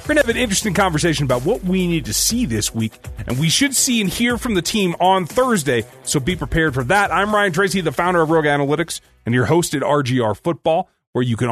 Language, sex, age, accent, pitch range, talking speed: English, male, 30-49, American, 120-175 Hz, 250 wpm